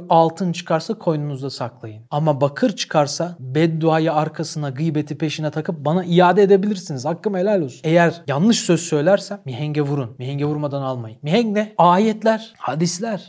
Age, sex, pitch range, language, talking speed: 40-59, male, 140-185 Hz, Turkish, 140 wpm